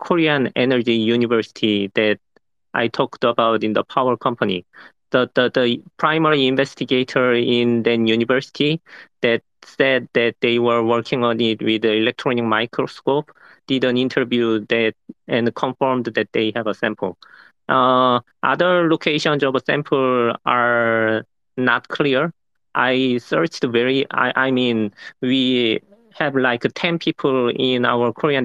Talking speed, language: 135 wpm, English